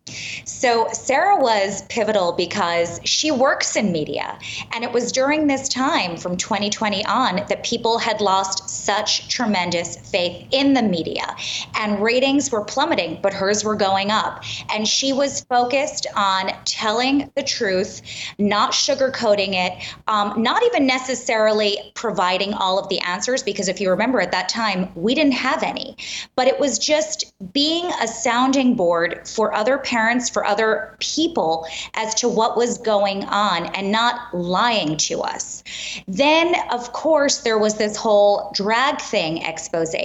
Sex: female